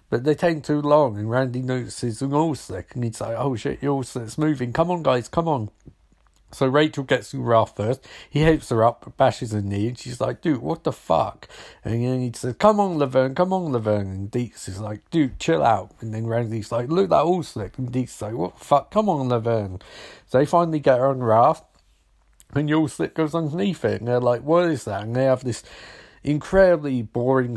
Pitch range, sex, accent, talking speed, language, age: 110-145 Hz, male, British, 225 wpm, English, 50-69